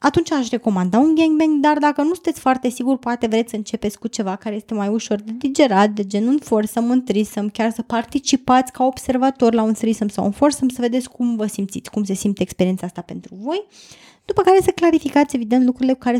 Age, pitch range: 20-39, 210-265 Hz